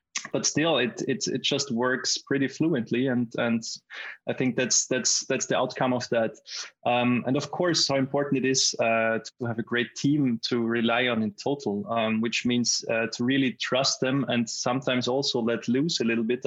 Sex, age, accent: male, 20-39, German